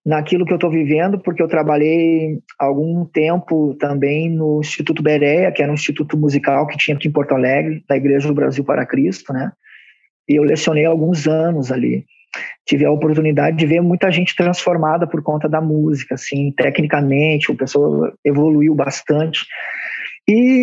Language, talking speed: Portuguese, 165 wpm